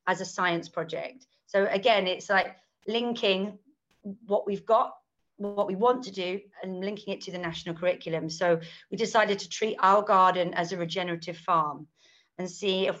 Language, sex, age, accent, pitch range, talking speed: English, female, 30-49, British, 175-220 Hz, 175 wpm